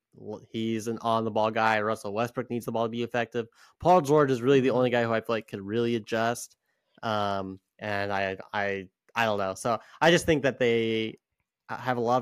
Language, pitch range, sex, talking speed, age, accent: English, 100-120 Hz, male, 205 wpm, 20-39, American